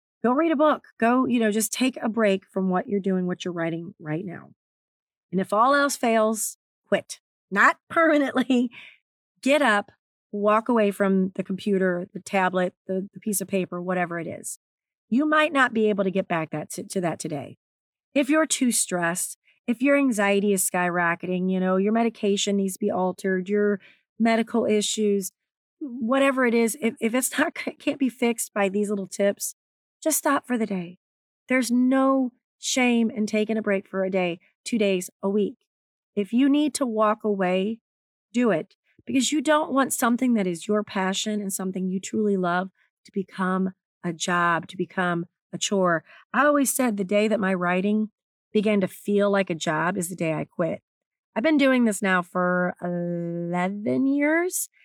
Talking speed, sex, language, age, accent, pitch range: 185 wpm, female, English, 30-49, American, 185-240 Hz